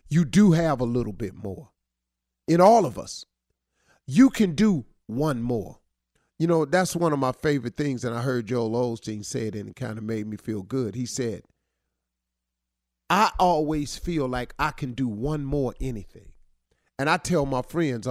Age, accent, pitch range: 40-59, American, 95-155 Hz